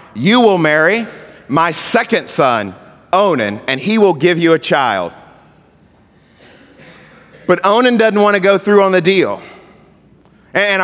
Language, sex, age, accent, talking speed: English, male, 30-49, American, 140 wpm